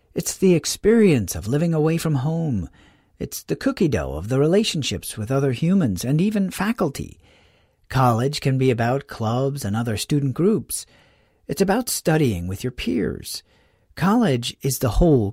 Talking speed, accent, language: 155 wpm, American, English